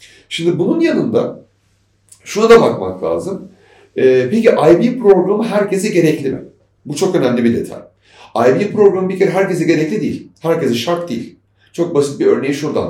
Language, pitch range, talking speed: Turkish, 115-170 Hz, 160 wpm